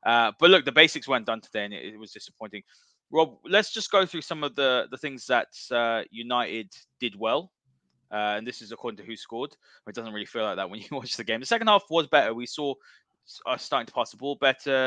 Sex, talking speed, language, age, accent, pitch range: male, 245 wpm, English, 20-39, British, 110-145 Hz